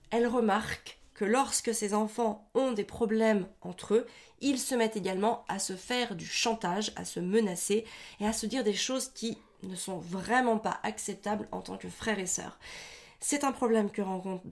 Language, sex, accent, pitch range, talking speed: French, female, French, 185-235 Hz, 190 wpm